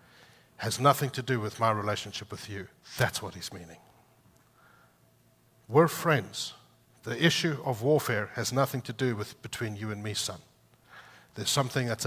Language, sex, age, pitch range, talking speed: English, male, 60-79, 105-130 Hz, 160 wpm